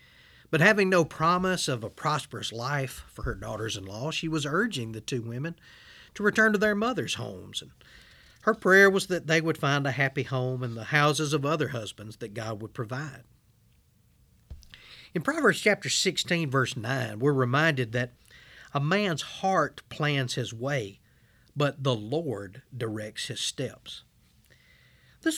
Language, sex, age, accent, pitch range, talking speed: English, male, 40-59, American, 120-170 Hz, 155 wpm